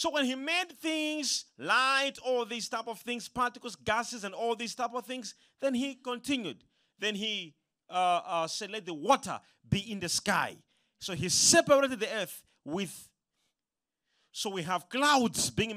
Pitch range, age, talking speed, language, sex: 185-270 Hz, 40-59, 170 wpm, English, male